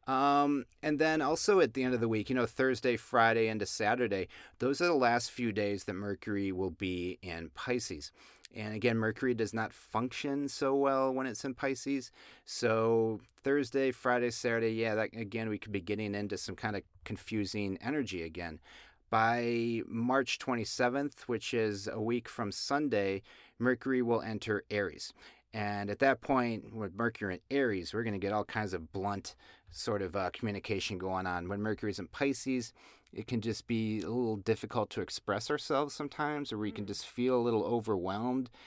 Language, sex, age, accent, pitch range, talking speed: English, male, 40-59, American, 105-125 Hz, 180 wpm